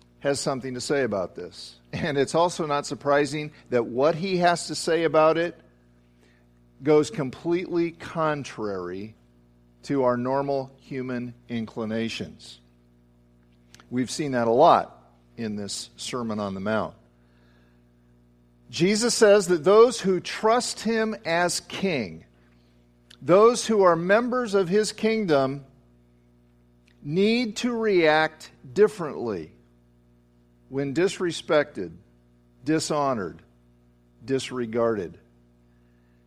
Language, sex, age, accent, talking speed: English, male, 50-69, American, 105 wpm